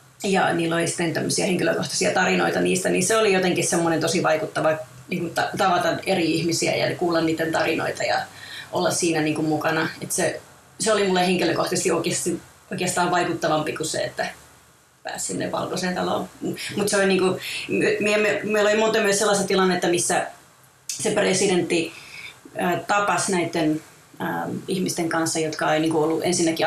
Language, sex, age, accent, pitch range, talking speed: Finnish, female, 30-49, native, 160-175 Hz, 150 wpm